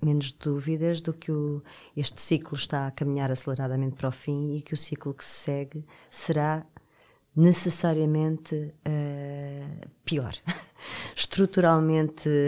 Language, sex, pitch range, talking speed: Portuguese, female, 135-155 Hz, 115 wpm